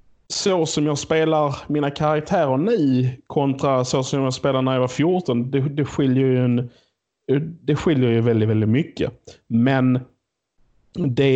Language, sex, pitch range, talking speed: Swedish, male, 125-150 Hz, 155 wpm